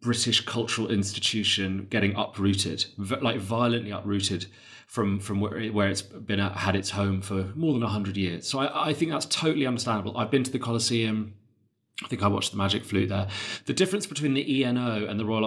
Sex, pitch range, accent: male, 105-125 Hz, British